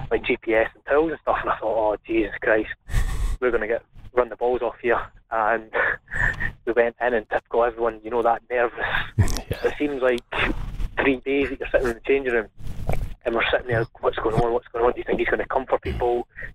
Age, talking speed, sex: 20-39, 230 wpm, male